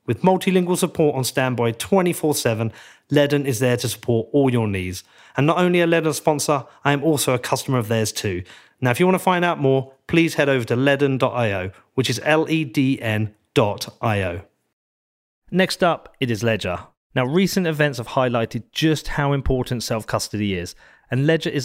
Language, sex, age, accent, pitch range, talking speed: English, male, 30-49, British, 115-155 Hz, 175 wpm